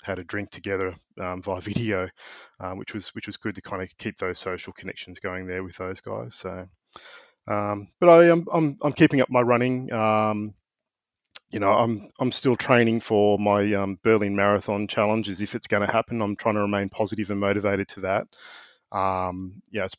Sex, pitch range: male, 95-110 Hz